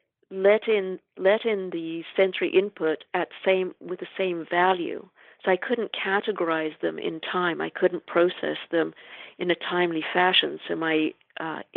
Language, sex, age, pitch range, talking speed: English, female, 50-69, 160-190 Hz, 160 wpm